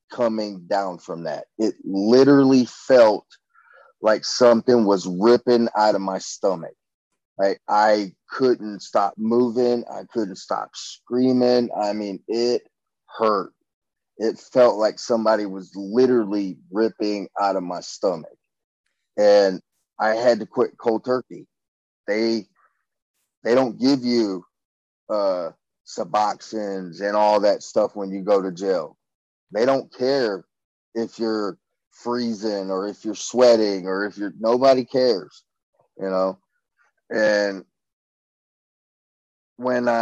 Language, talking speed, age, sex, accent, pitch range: English, 120 wpm, 30-49, male, American, 100-120 Hz